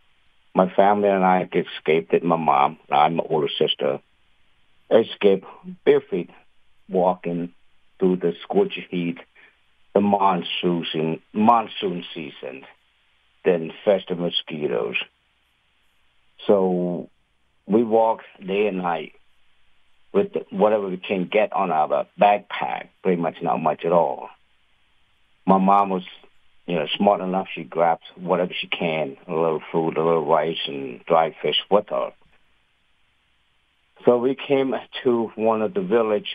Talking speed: 130 wpm